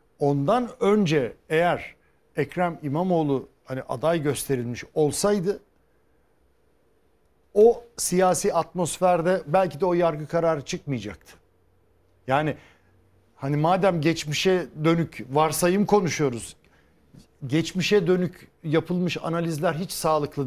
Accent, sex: native, male